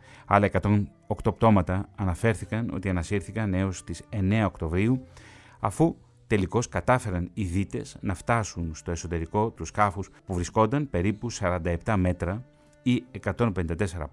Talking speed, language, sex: 120 wpm, Greek, male